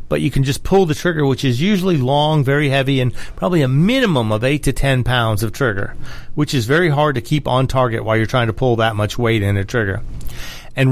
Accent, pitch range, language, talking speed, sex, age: American, 115-145 Hz, English, 240 wpm, male, 40-59